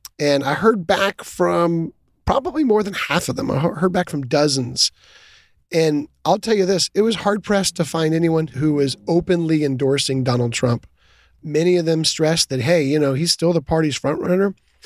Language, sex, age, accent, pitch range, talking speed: English, male, 30-49, American, 140-180 Hz, 190 wpm